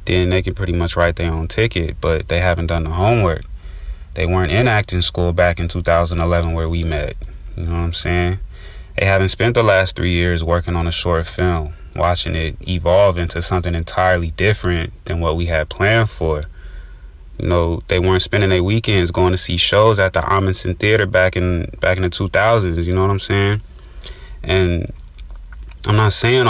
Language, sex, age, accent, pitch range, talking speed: English, male, 20-39, American, 85-95 Hz, 195 wpm